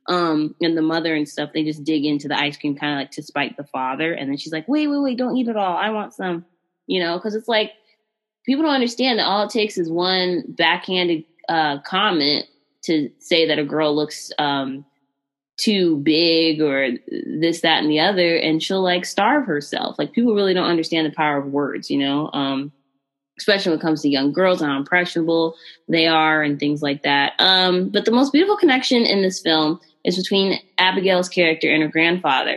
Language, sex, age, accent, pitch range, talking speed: English, female, 20-39, American, 155-205 Hz, 210 wpm